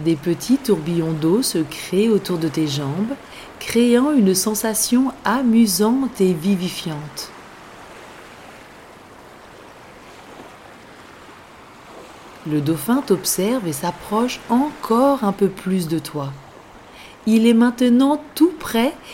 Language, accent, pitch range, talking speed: French, French, 165-235 Hz, 100 wpm